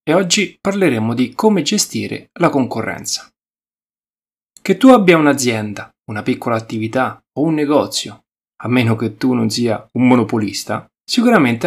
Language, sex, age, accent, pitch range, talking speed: Italian, male, 30-49, native, 115-180 Hz, 140 wpm